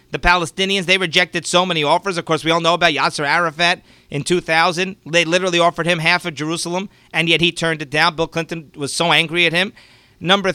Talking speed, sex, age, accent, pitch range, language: 215 wpm, male, 40-59, American, 160-200 Hz, English